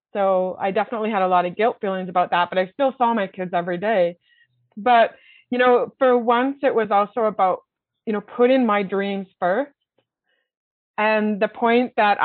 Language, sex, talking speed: English, female, 185 wpm